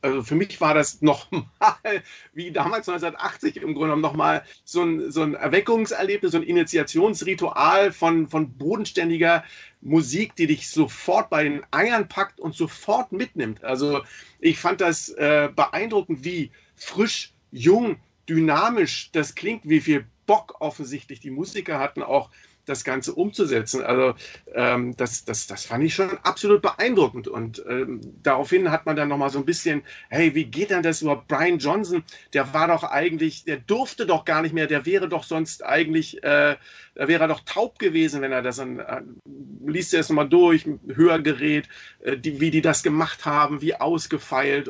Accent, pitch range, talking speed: German, 140-170 Hz, 170 wpm